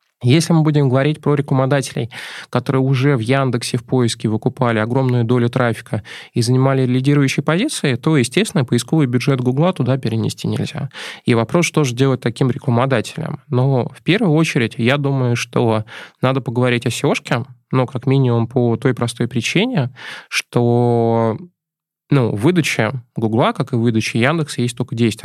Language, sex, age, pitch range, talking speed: Russian, male, 20-39, 120-150 Hz, 155 wpm